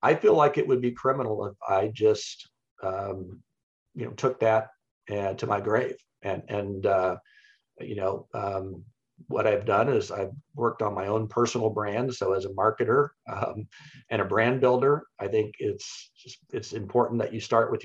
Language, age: English, 50-69